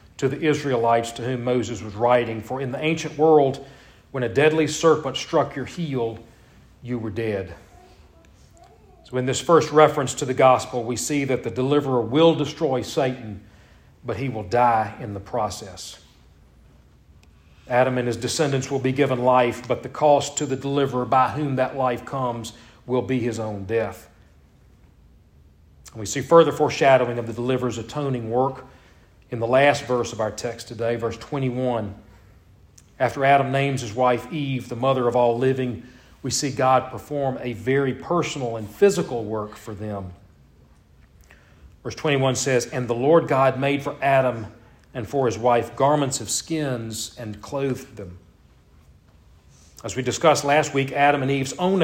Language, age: English, 40-59